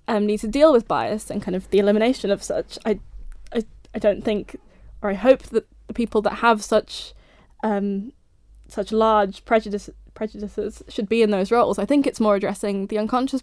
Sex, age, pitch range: female, 10-29, 205-245 Hz